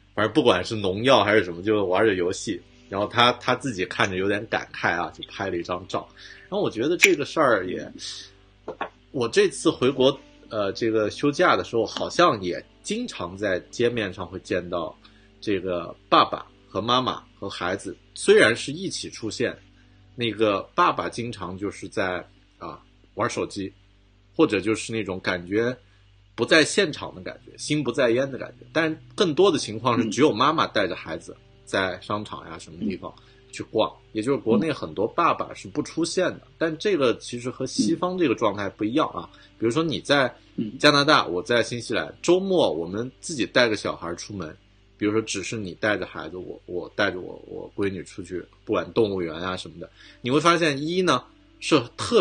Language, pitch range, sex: Chinese, 100-140 Hz, male